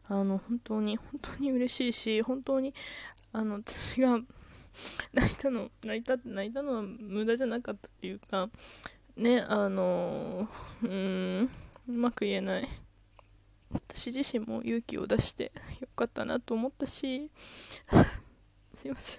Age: 20-39